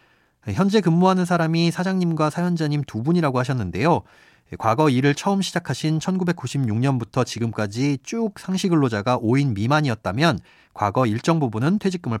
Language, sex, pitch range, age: Korean, male, 110-165 Hz, 40-59